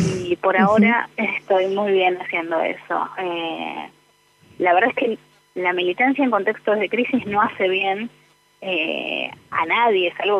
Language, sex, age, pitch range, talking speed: Spanish, female, 20-39, 180-215 Hz, 155 wpm